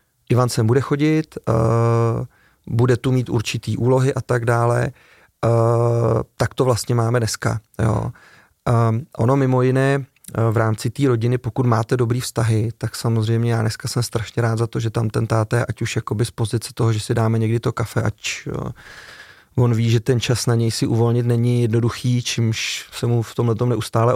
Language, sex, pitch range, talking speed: Czech, male, 110-120 Hz, 195 wpm